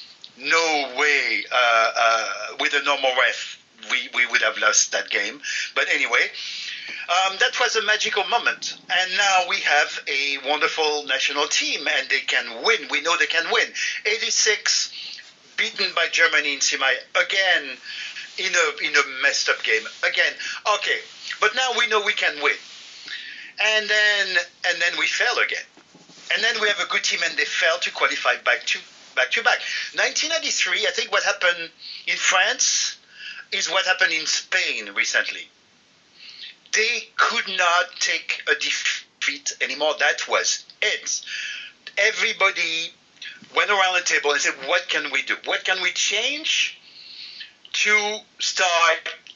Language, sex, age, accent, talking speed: English, male, 50-69, French, 155 wpm